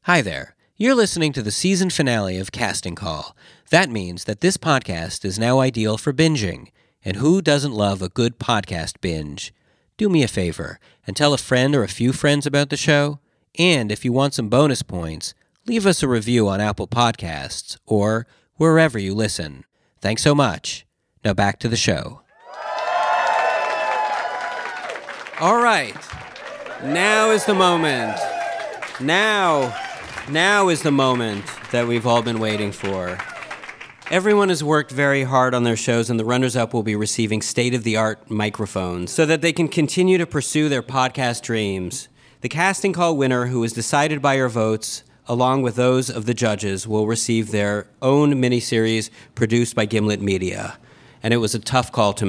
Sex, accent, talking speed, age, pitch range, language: male, American, 165 wpm, 40-59, 105-145 Hz, English